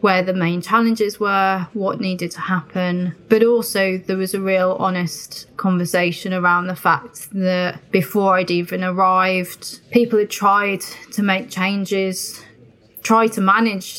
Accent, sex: British, female